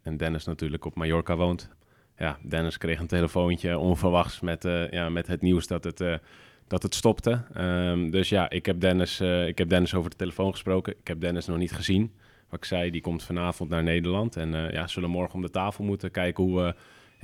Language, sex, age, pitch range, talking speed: Dutch, male, 30-49, 90-105 Hz, 225 wpm